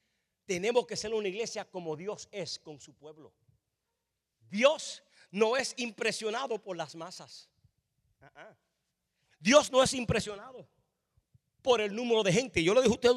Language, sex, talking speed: English, male, 145 wpm